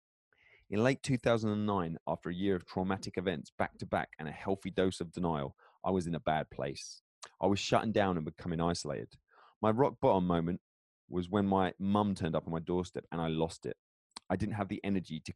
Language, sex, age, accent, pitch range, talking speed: English, male, 30-49, British, 80-105 Hz, 200 wpm